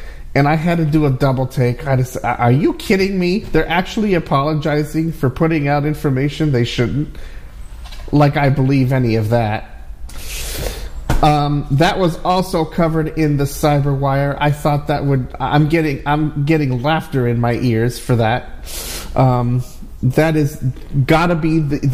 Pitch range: 120-155 Hz